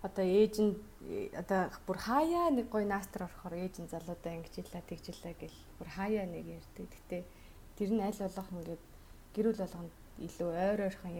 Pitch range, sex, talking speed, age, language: 170-195 Hz, female, 65 wpm, 30-49, Russian